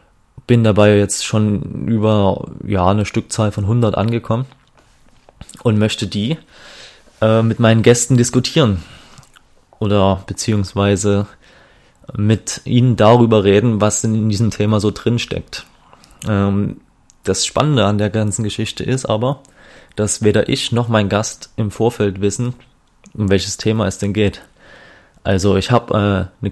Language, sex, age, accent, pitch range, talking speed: German, male, 20-39, German, 100-115 Hz, 140 wpm